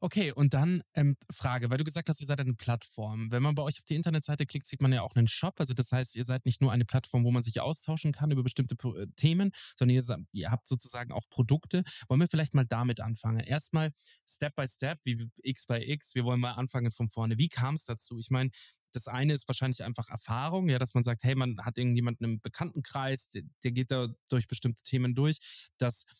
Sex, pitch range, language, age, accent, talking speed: male, 120-145 Hz, German, 20-39, German, 230 wpm